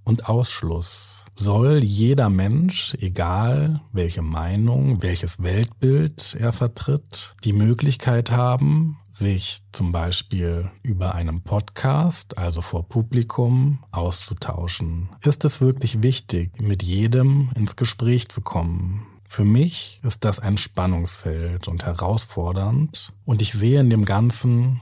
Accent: German